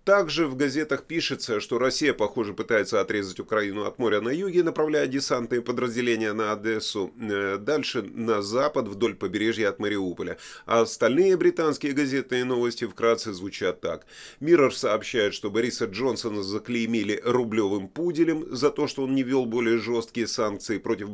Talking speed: 150 wpm